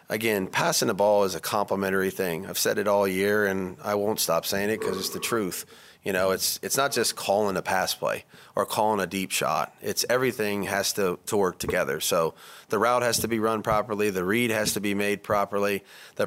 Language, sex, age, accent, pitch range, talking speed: English, male, 30-49, American, 100-110 Hz, 225 wpm